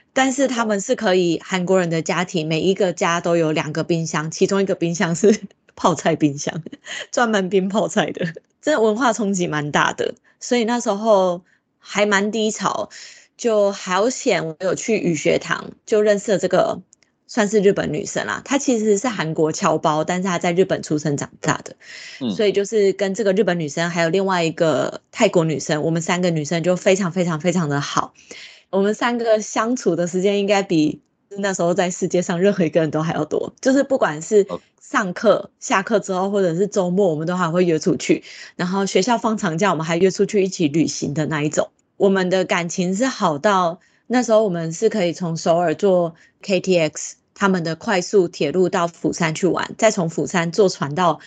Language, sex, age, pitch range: Chinese, female, 20-39, 165-205 Hz